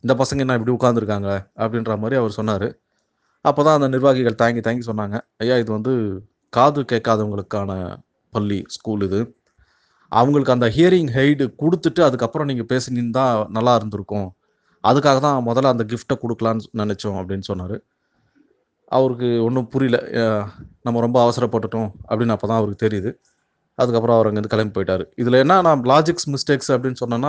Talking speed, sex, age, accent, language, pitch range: 145 wpm, male, 30-49, native, Tamil, 110-140 Hz